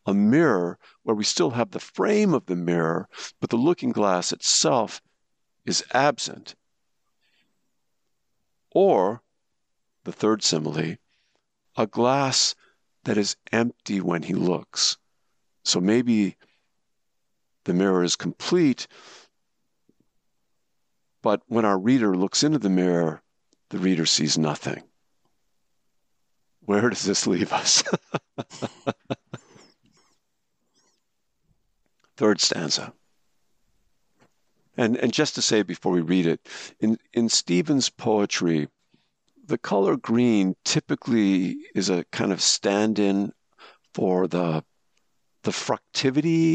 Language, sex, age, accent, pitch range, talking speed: English, male, 50-69, American, 90-120 Hz, 105 wpm